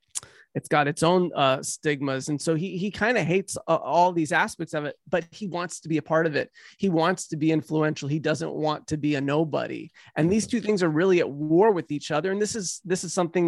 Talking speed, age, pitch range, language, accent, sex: 255 wpm, 30-49, 155-180 Hz, English, American, male